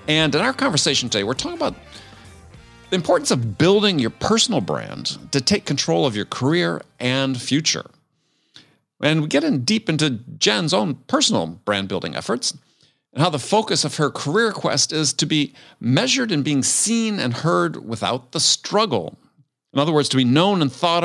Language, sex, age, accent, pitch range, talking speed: English, male, 50-69, American, 120-165 Hz, 175 wpm